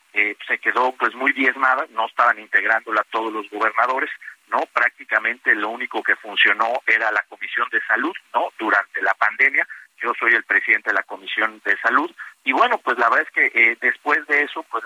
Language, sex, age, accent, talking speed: Spanish, male, 50-69, Mexican, 195 wpm